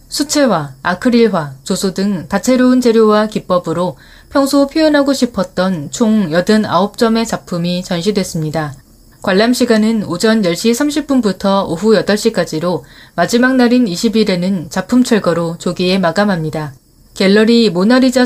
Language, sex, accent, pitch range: Korean, female, native, 175-235 Hz